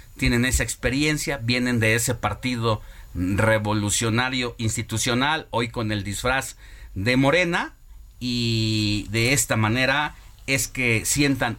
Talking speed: 115 wpm